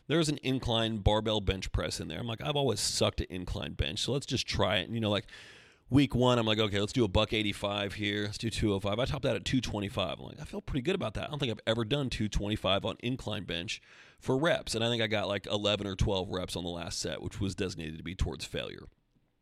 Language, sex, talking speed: English, male, 285 wpm